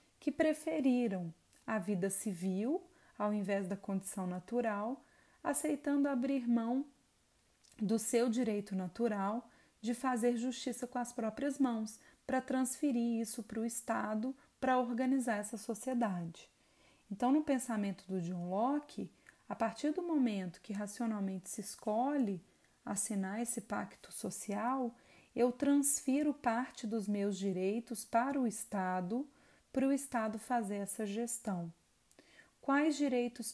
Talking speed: 125 wpm